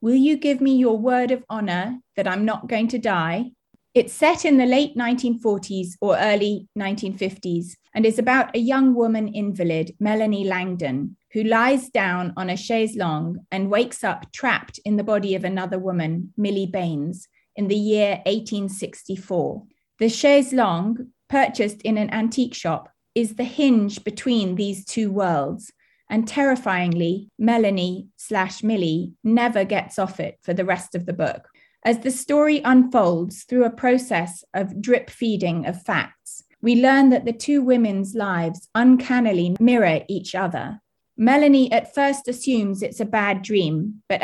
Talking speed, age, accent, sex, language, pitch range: 160 wpm, 30-49, British, female, English, 190-245 Hz